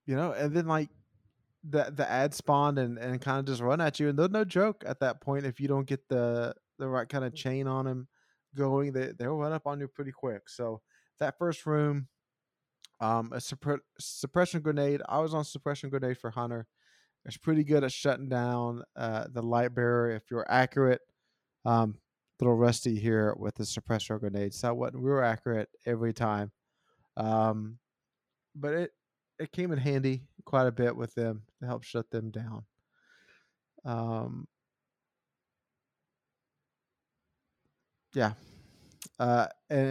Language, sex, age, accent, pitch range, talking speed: English, male, 20-39, American, 115-140 Hz, 165 wpm